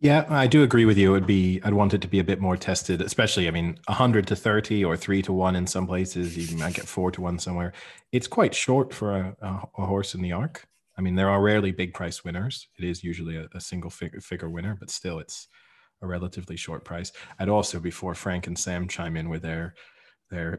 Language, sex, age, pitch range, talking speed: English, male, 30-49, 85-100 Hz, 240 wpm